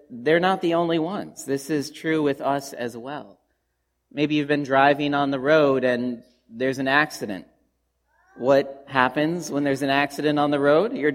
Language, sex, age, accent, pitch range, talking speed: English, male, 40-59, American, 115-145 Hz, 180 wpm